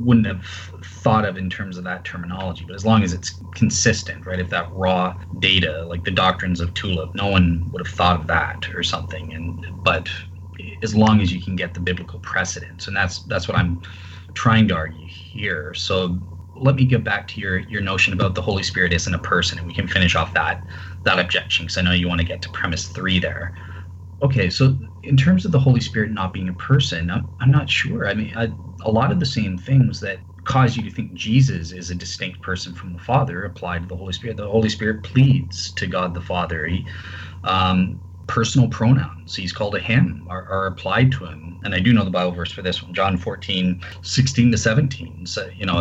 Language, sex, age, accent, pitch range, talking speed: English, male, 20-39, American, 90-110 Hz, 225 wpm